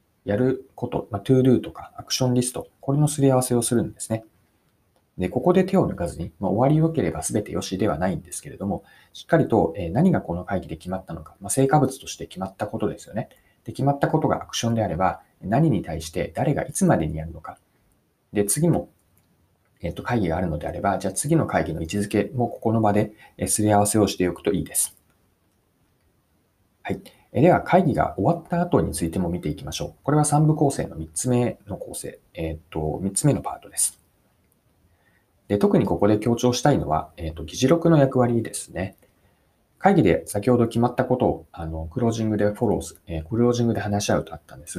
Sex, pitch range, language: male, 95-135 Hz, Japanese